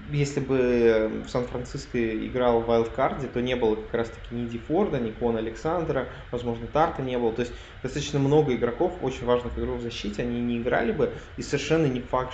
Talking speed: 195 wpm